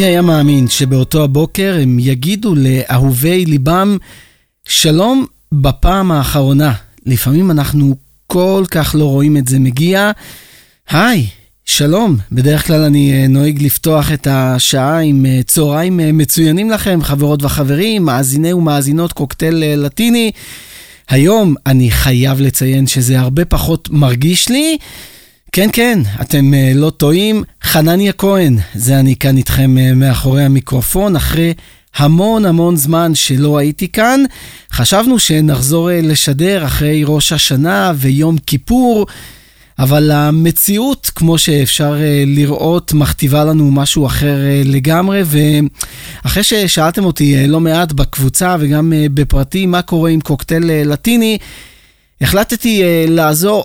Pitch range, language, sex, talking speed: 140-175 Hz, Hebrew, male, 115 wpm